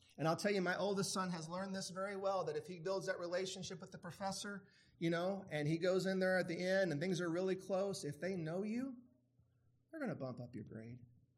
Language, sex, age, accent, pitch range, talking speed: English, male, 30-49, American, 135-200 Hz, 250 wpm